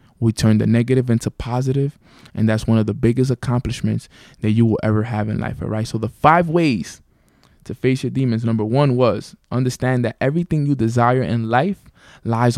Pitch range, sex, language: 110-130 Hz, male, English